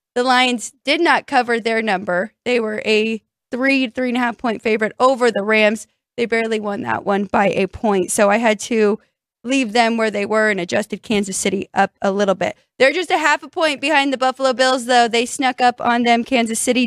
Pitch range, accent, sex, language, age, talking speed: 225-275 Hz, American, female, English, 20-39, 225 wpm